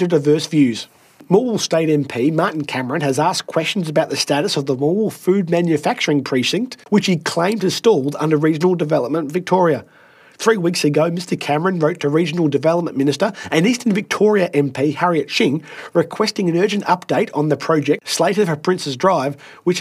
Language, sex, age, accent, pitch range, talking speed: English, male, 30-49, Australian, 150-185 Hz, 170 wpm